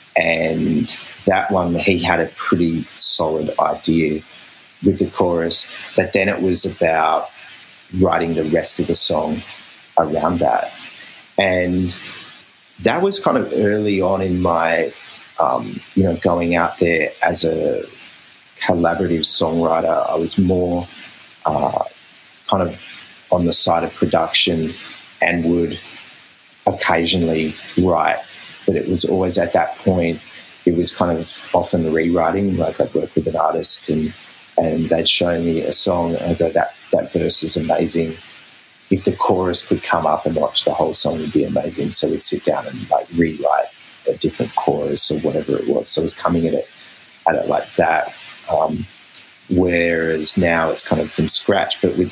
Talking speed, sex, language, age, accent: 165 wpm, male, English, 30-49, Australian